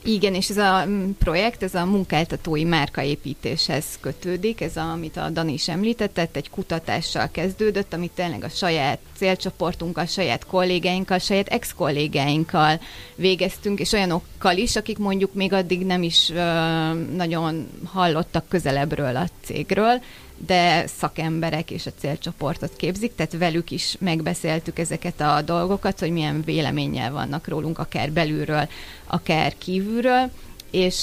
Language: Hungarian